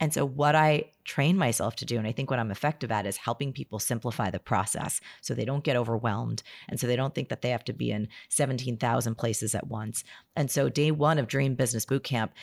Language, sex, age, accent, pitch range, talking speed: English, female, 30-49, American, 115-145 Hz, 235 wpm